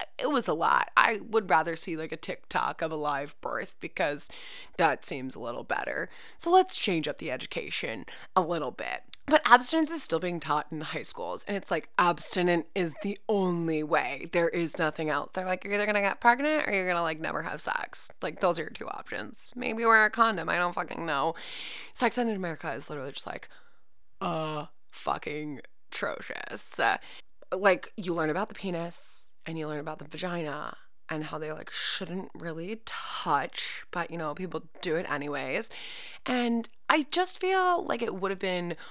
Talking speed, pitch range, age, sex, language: 195 wpm, 155-205 Hz, 20-39, female, English